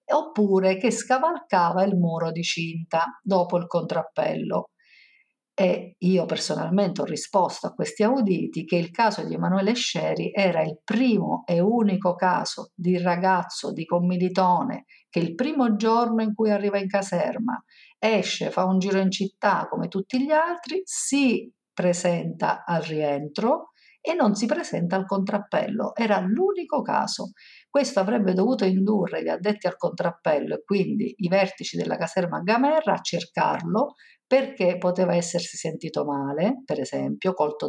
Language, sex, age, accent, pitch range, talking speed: Italian, female, 50-69, native, 175-230 Hz, 145 wpm